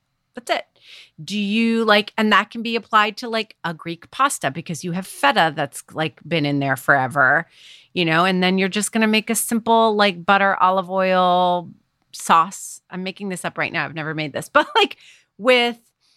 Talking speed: 200 wpm